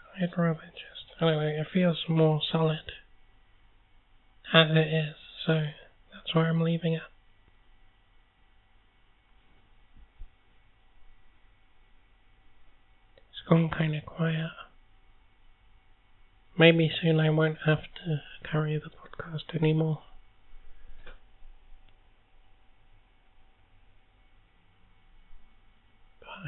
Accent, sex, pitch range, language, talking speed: American, male, 95-155 Hz, English, 75 wpm